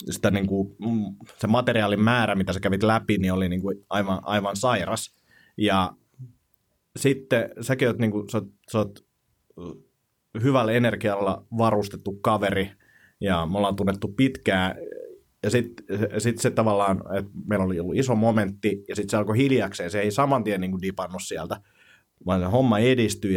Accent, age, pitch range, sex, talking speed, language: native, 30-49, 95-115 Hz, male, 155 wpm, Finnish